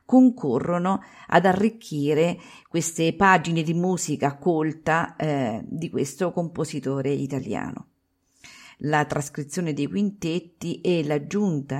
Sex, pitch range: female, 145-175 Hz